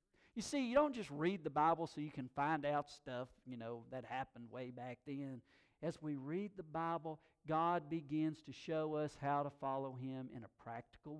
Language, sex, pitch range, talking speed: English, male, 125-170 Hz, 205 wpm